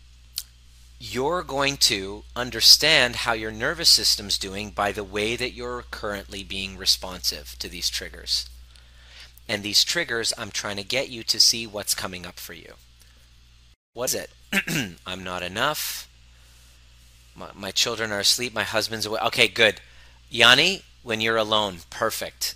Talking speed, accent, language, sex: 145 wpm, American, English, male